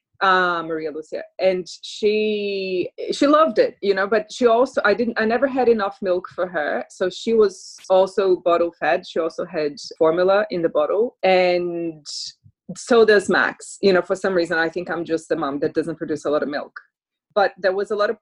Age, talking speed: 20-39, 210 wpm